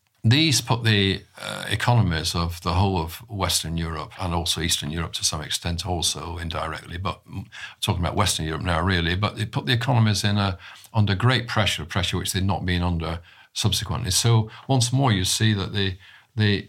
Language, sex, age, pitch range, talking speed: English, male, 50-69, 85-110 Hz, 185 wpm